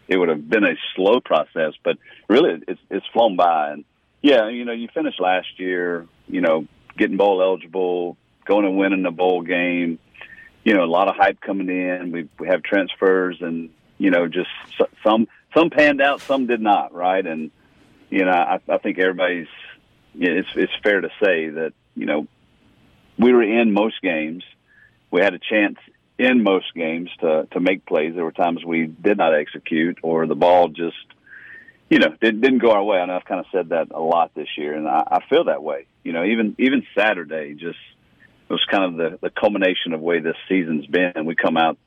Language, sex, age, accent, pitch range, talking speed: English, male, 40-59, American, 85-105 Hz, 210 wpm